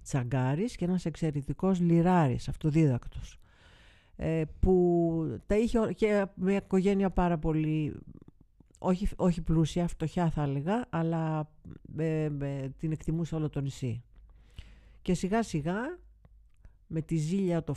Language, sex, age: Greek, female, 50-69